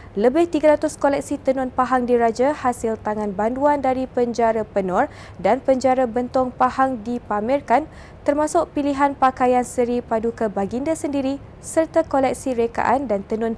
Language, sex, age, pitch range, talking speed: Malay, female, 20-39, 230-275 Hz, 130 wpm